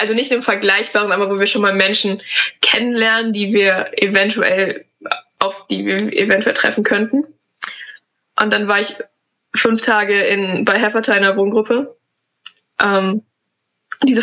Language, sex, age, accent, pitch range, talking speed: German, female, 20-39, German, 200-240 Hz, 135 wpm